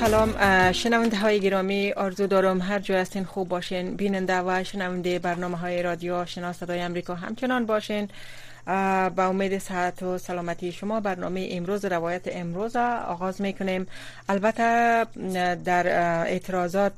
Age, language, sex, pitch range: 30-49, Persian, female, 175-190 Hz